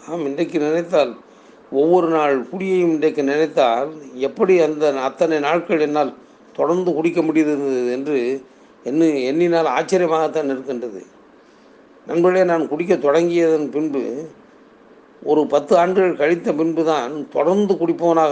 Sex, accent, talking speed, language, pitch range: male, native, 110 wpm, Tamil, 140-175 Hz